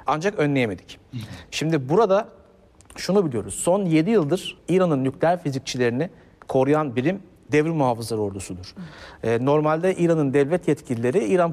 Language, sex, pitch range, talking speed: Turkish, male, 135-175 Hz, 115 wpm